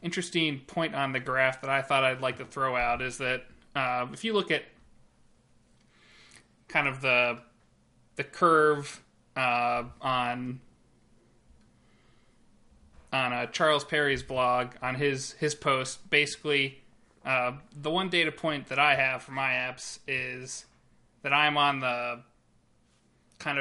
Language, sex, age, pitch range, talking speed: English, male, 30-49, 125-145 Hz, 135 wpm